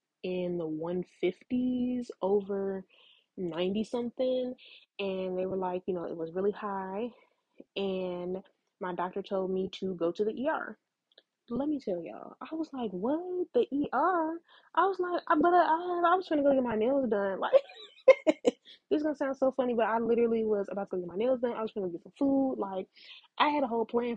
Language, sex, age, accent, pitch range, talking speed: English, female, 20-39, American, 190-255 Hz, 195 wpm